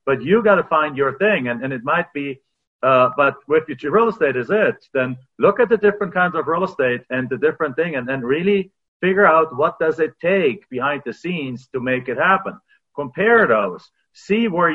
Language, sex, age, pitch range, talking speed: English, male, 40-59, 135-195 Hz, 215 wpm